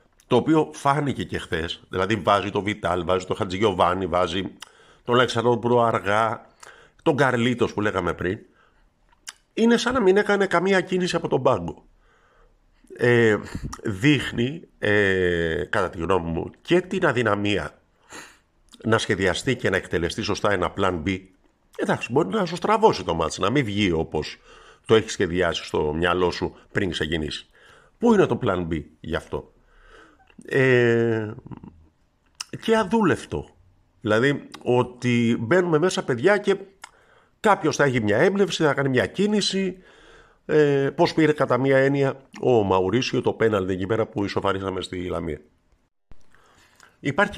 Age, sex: 50-69, male